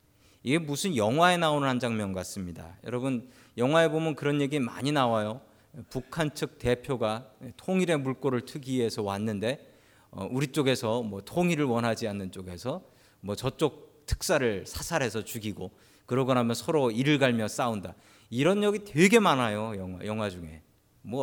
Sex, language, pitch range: male, Korean, 110-165 Hz